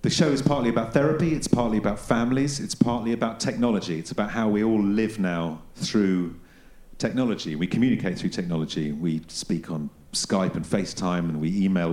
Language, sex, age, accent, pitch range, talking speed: English, male, 40-59, British, 85-120 Hz, 180 wpm